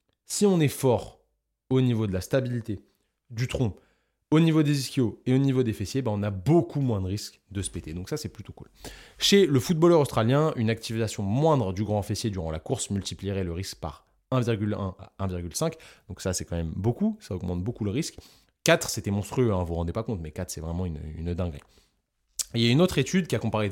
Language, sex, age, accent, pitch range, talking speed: French, male, 20-39, French, 95-130 Hz, 235 wpm